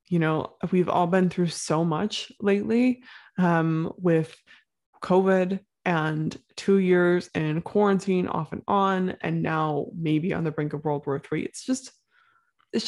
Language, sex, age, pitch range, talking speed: English, female, 20-39, 170-195 Hz, 155 wpm